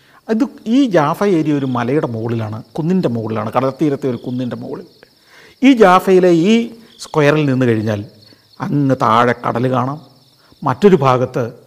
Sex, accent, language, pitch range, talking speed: male, native, Malayalam, 120-155 Hz, 130 wpm